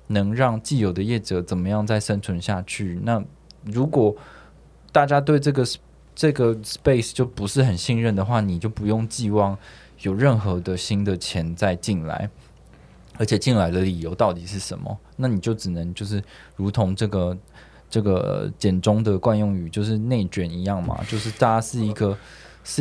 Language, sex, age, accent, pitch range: Chinese, male, 20-39, native, 95-120 Hz